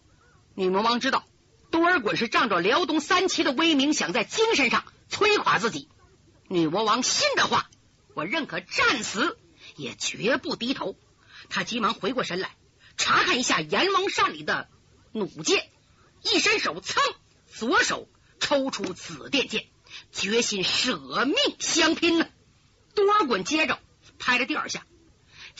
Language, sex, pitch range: Chinese, female, 255-390 Hz